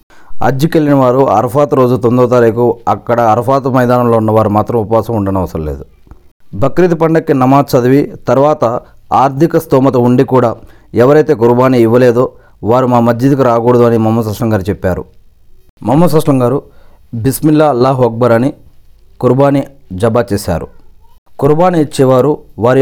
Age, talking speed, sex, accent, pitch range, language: 40-59, 120 wpm, male, native, 115-150 Hz, Telugu